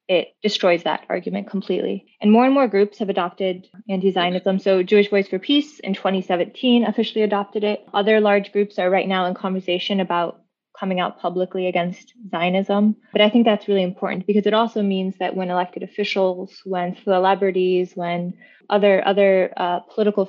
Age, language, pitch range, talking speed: 20-39, English, 180-205 Hz, 175 wpm